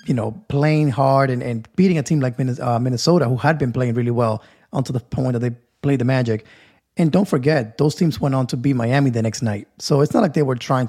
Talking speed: 250 wpm